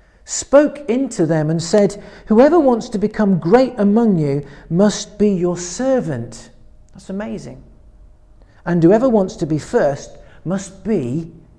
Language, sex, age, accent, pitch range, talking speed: English, male, 40-59, British, 150-225 Hz, 135 wpm